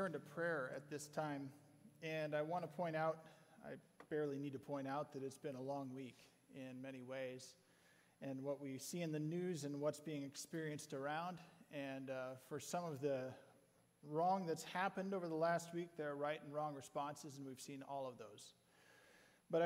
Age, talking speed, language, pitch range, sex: 40-59, 195 wpm, English, 140-170 Hz, male